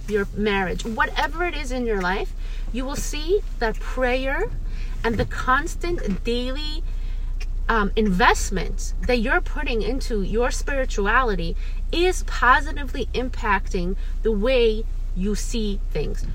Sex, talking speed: female, 120 wpm